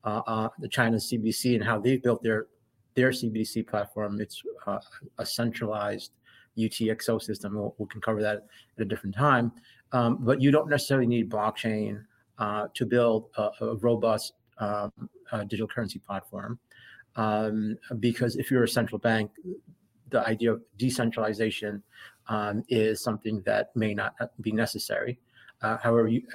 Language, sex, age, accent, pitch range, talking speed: English, male, 30-49, American, 110-125 Hz, 150 wpm